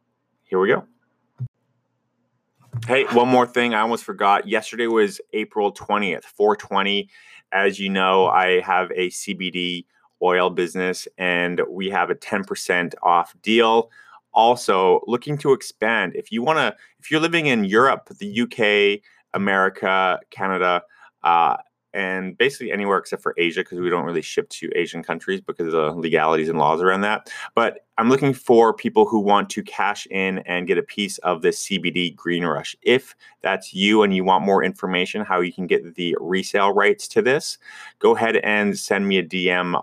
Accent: American